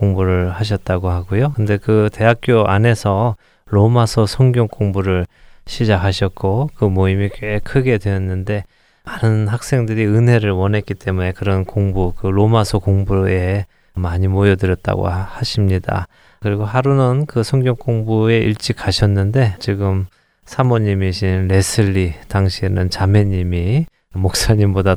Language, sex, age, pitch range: Korean, male, 20-39, 95-115 Hz